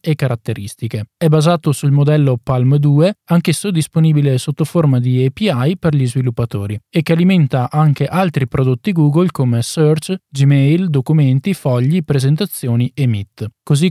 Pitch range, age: 130-170 Hz, 20-39